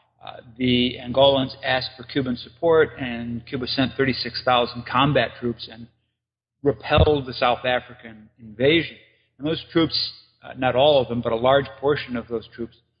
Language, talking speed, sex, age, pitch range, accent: English, 155 wpm, male, 50-69, 115-130 Hz, American